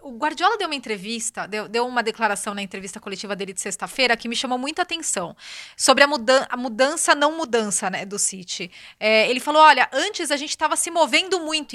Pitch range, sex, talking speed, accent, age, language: 230-295 Hz, female, 210 wpm, Brazilian, 20-39, Portuguese